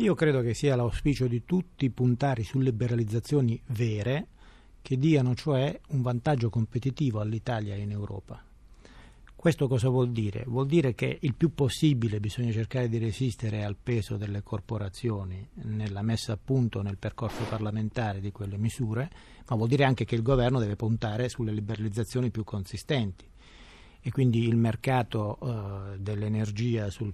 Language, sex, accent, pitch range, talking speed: Italian, male, native, 110-130 Hz, 155 wpm